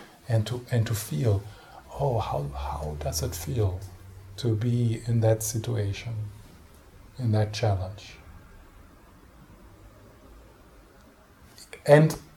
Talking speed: 95 wpm